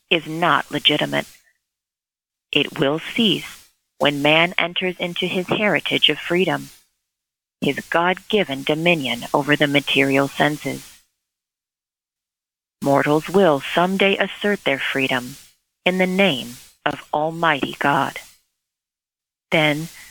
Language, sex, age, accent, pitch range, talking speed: English, female, 40-59, American, 140-180 Hz, 100 wpm